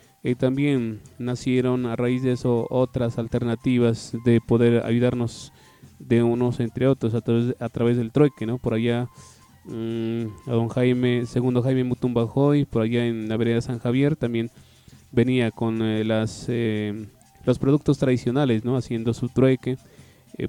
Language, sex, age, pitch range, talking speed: Spanish, male, 20-39, 115-130 Hz, 155 wpm